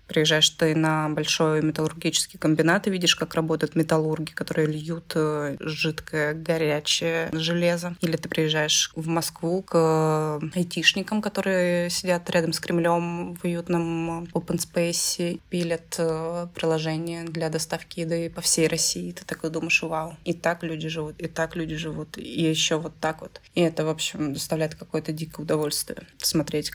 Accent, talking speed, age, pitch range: native, 150 wpm, 20-39, 155-175 Hz